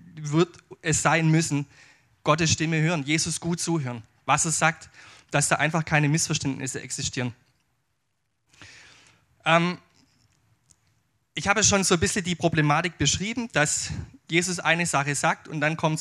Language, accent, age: German, German, 20-39